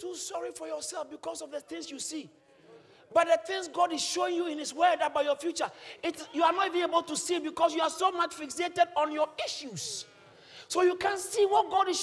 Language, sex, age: English, male, 50-69